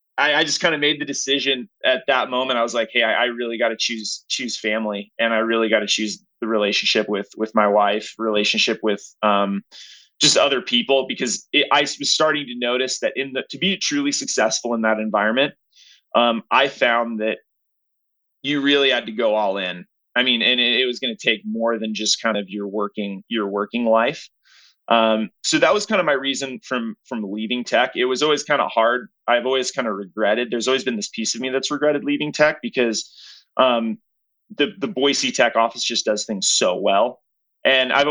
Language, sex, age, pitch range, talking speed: English, male, 30-49, 110-135 Hz, 215 wpm